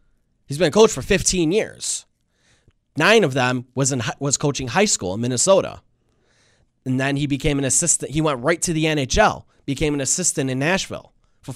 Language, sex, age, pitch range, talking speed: English, male, 20-39, 120-155 Hz, 185 wpm